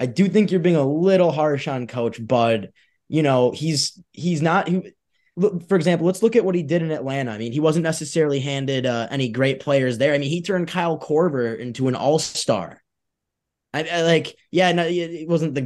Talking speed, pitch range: 220 wpm, 125-165 Hz